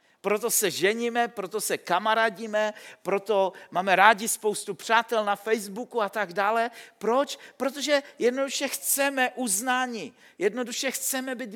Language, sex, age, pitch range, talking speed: Czech, male, 50-69, 220-260 Hz, 125 wpm